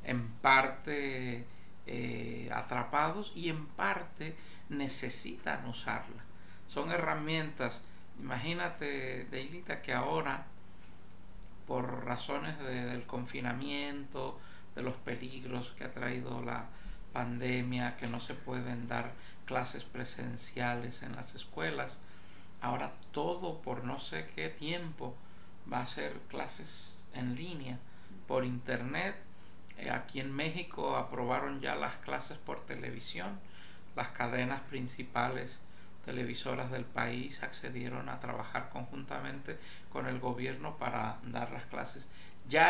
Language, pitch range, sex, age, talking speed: Spanish, 110-135 Hz, male, 50-69, 110 wpm